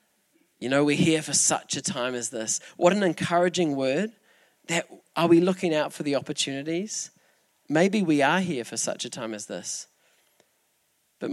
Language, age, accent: English, 20-39, Australian